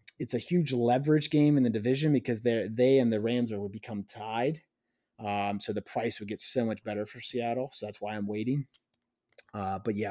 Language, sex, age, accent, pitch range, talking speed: English, male, 30-49, American, 110-130 Hz, 215 wpm